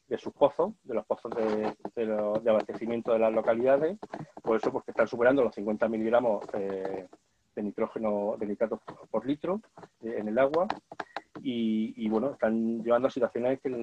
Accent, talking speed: Spanish, 180 wpm